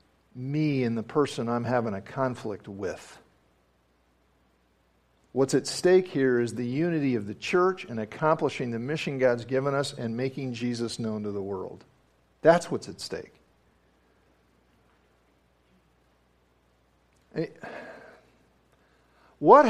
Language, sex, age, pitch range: English, male, 50-69, 115-190 Hz